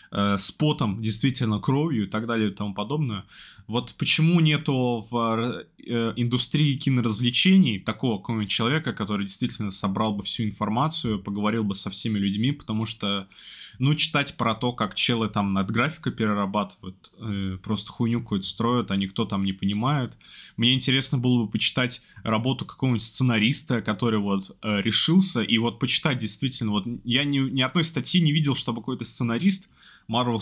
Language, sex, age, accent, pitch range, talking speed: Russian, male, 20-39, native, 105-125 Hz, 160 wpm